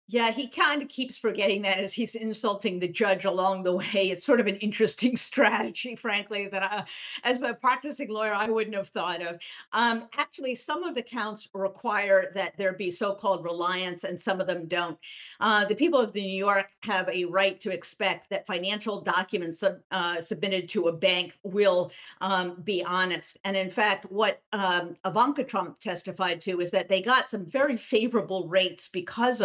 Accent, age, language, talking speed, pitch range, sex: American, 50-69, English, 185 wpm, 180-220 Hz, female